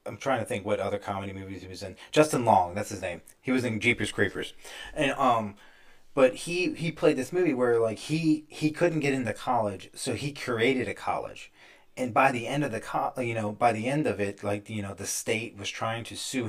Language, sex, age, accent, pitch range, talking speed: English, male, 30-49, American, 105-135 Hz, 235 wpm